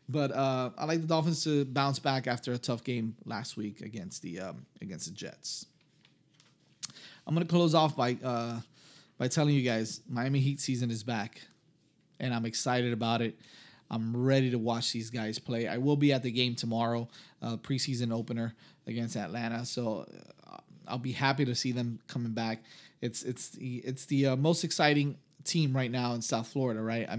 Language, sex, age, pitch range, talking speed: English, male, 20-39, 120-155 Hz, 190 wpm